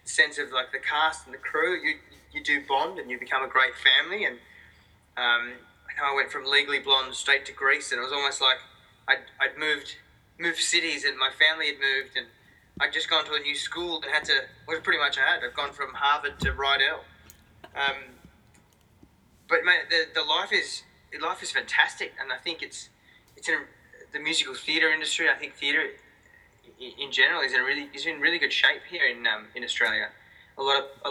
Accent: Australian